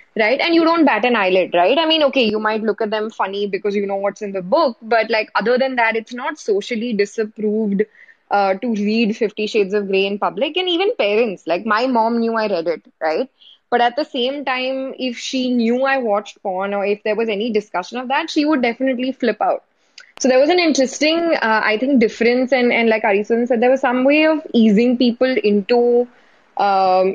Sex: female